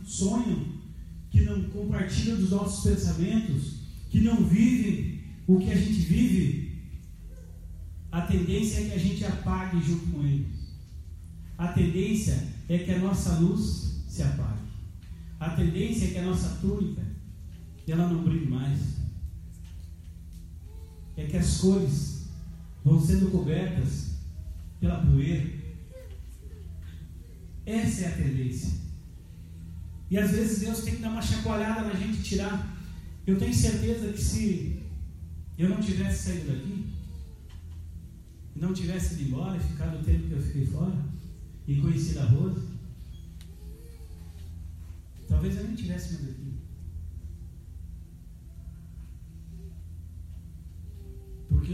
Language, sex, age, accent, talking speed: Portuguese, male, 40-59, Brazilian, 120 wpm